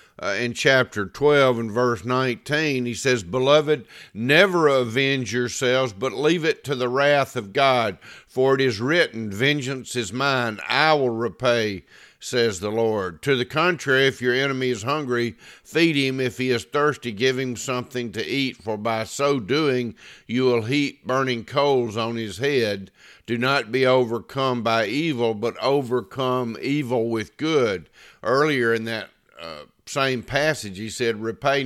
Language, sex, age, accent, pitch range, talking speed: English, male, 50-69, American, 115-140 Hz, 160 wpm